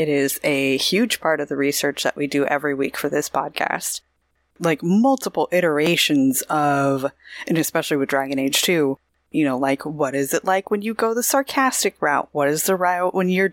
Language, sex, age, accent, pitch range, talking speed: English, female, 20-39, American, 145-205 Hz, 200 wpm